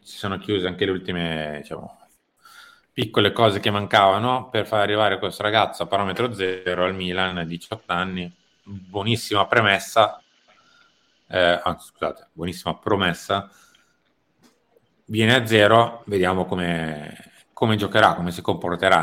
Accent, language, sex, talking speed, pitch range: native, Italian, male, 130 wpm, 85-105 Hz